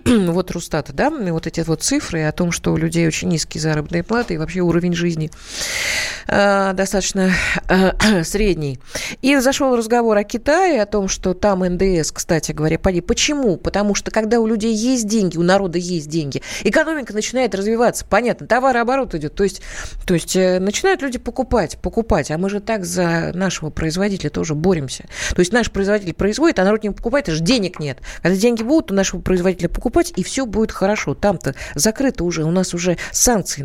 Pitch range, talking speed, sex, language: 160-225 Hz, 180 wpm, female, Russian